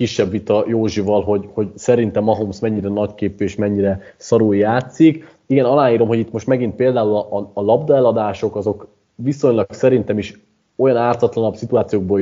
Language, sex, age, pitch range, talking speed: Hungarian, male, 30-49, 105-130 Hz, 145 wpm